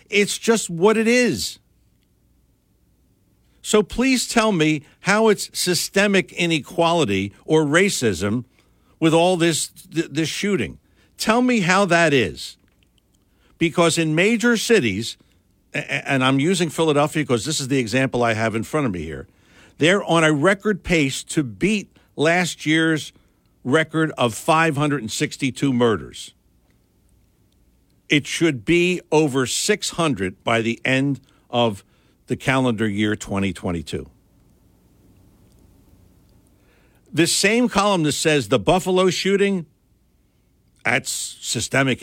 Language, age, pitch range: English, 60-79, 125-185 Hz